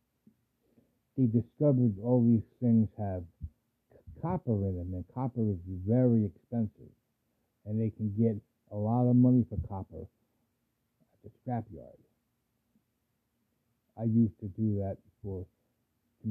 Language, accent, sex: English, American, male